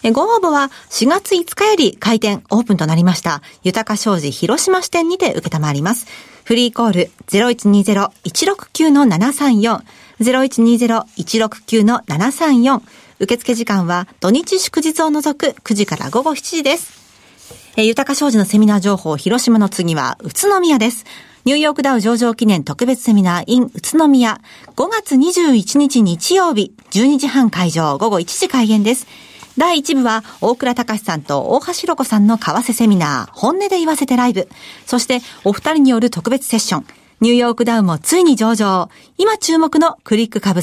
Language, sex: Japanese, female